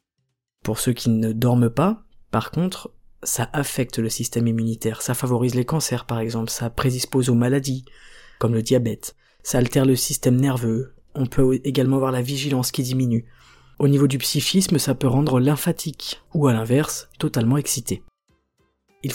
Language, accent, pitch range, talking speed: French, French, 120-150 Hz, 165 wpm